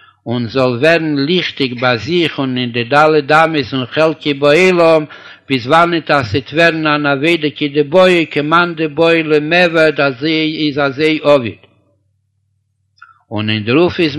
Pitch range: 130-155 Hz